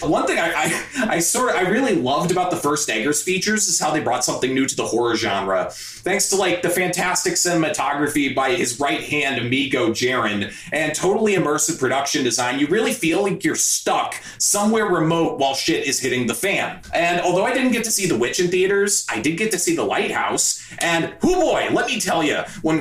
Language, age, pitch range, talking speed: English, 30-49, 155-215 Hz, 215 wpm